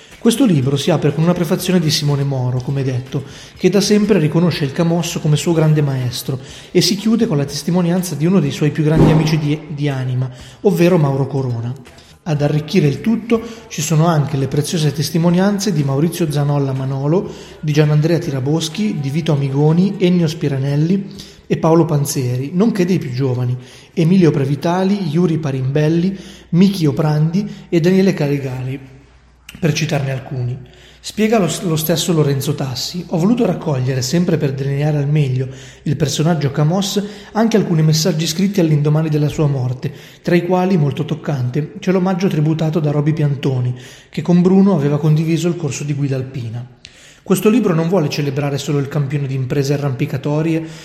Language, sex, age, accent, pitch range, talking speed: Italian, male, 30-49, native, 140-180 Hz, 165 wpm